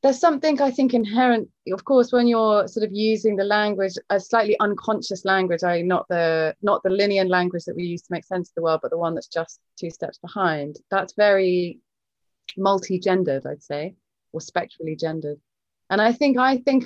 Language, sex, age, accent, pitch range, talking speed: English, female, 30-49, British, 160-200 Hz, 190 wpm